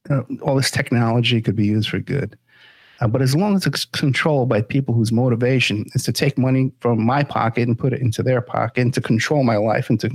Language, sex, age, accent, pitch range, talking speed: English, male, 50-69, American, 120-155 Hz, 235 wpm